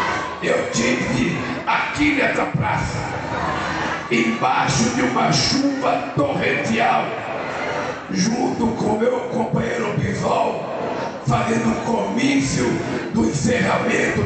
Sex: male